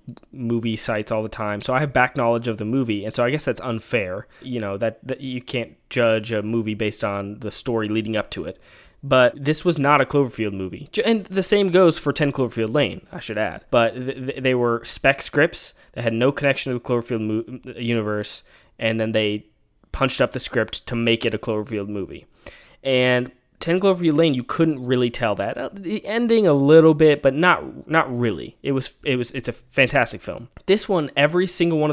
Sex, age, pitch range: male, 20-39, 115-155 Hz